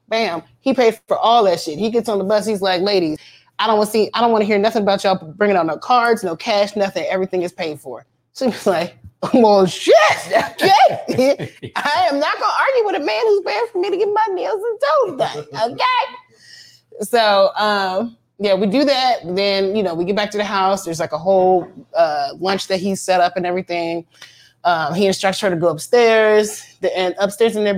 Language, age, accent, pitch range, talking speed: English, 20-39, American, 170-215 Hz, 225 wpm